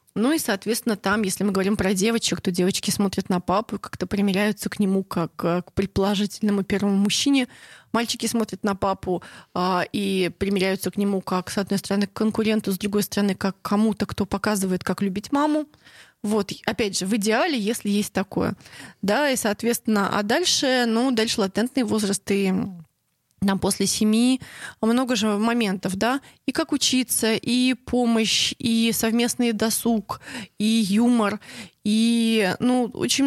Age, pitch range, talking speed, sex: 20-39, 195-235 Hz, 155 wpm, female